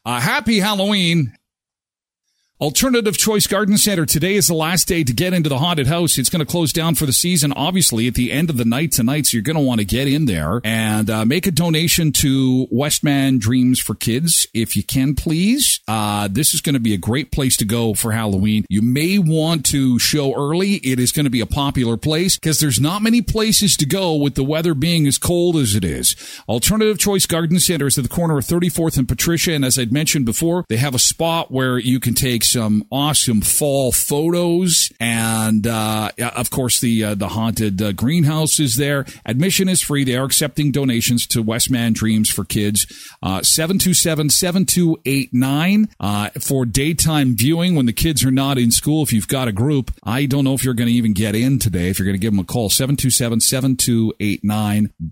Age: 50-69